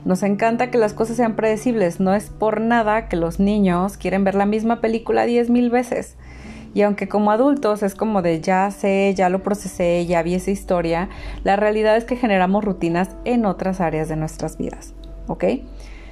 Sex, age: female, 30-49